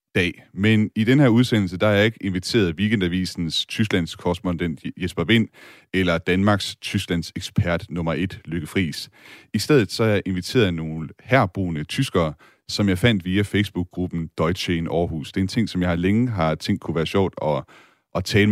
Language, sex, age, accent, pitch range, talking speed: Danish, male, 30-49, native, 85-110 Hz, 180 wpm